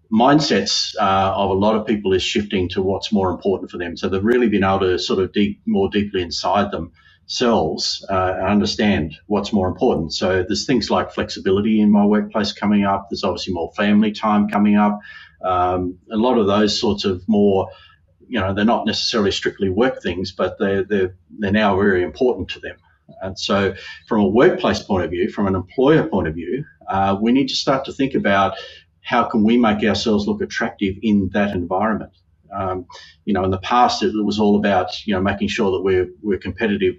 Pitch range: 95-105 Hz